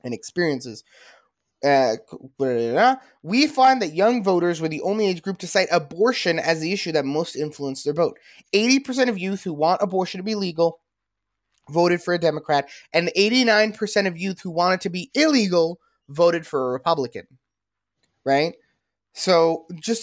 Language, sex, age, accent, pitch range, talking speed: English, male, 20-39, American, 140-195 Hz, 160 wpm